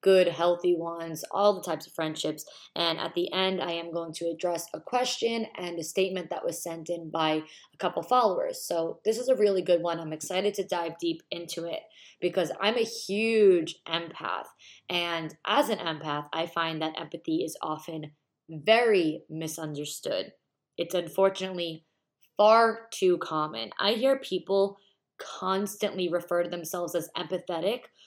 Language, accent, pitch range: English, American, 165-195 Hz